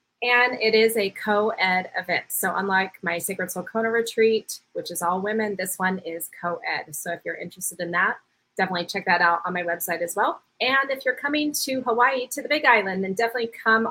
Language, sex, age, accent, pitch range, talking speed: English, female, 30-49, American, 175-220 Hz, 205 wpm